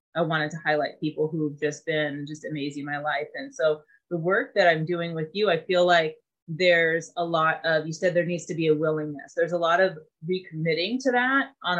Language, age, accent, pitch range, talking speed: English, 30-49, American, 155-185 Hz, 225 wpm